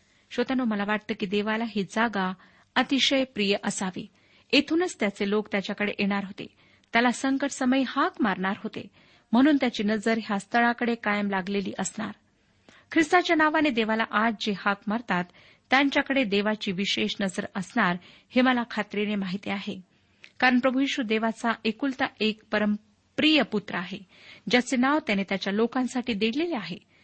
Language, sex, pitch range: Marathi, female, 200-250 Hz